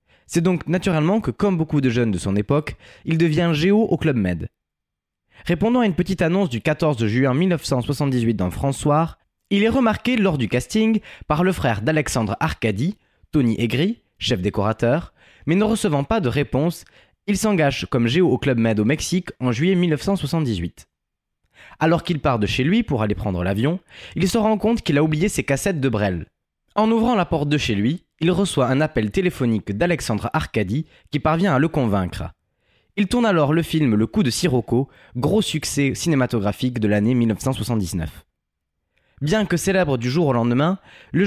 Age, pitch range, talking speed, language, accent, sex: 20-39, 110-175 Hz, 180 wpm, French, French, male